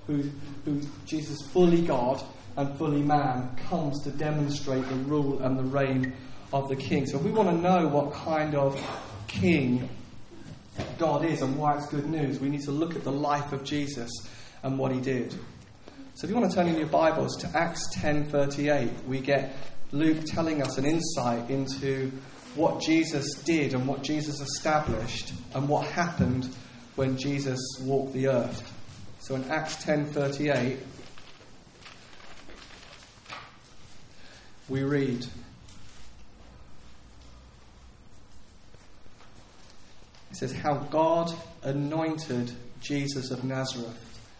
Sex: male